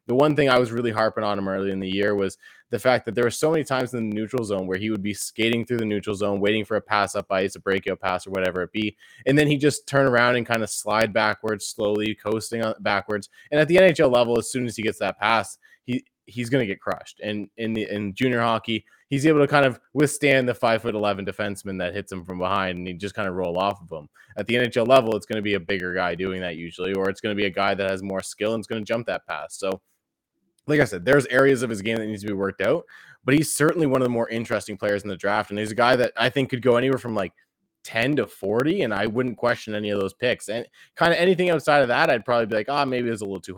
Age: 20-39